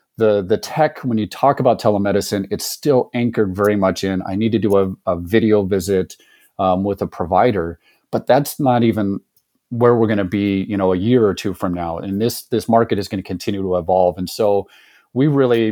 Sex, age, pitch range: male, 30-49, 95-115 Hz